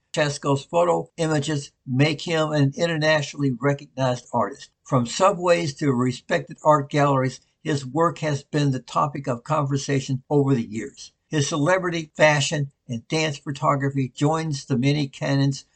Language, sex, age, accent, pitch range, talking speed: English, male, 60-79, American, 140-160 Hz, 135 wpm